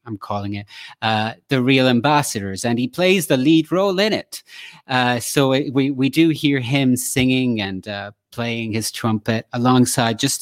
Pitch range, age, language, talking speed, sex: 120-155 Hz, 30-49, English, 180 wpm, male